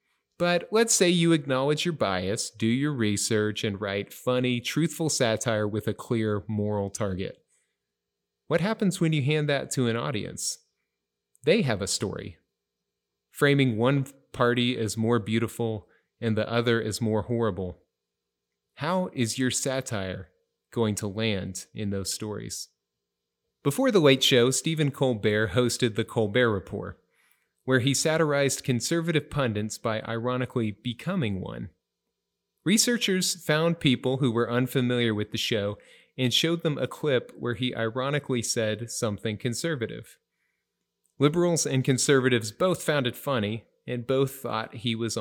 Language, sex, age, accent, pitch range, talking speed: English, male, 30-49, American, 110-140 Hz, 140 wpm